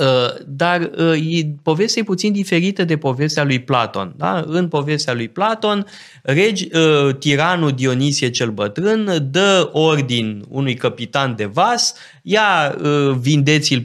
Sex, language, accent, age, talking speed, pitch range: male, Romanian, native, 20-39, 125 wpm, 125-175 Hz